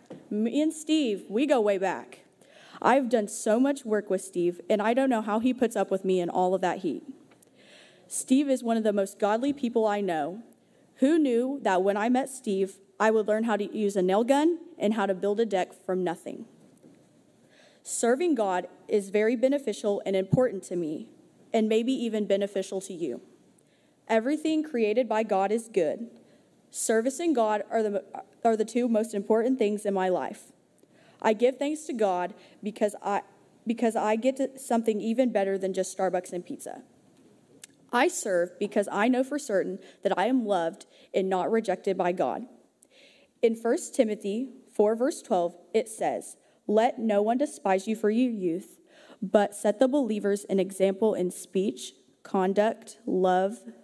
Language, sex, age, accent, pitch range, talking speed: English, female, 30-49, American, 195-245 Hz, 175 wpm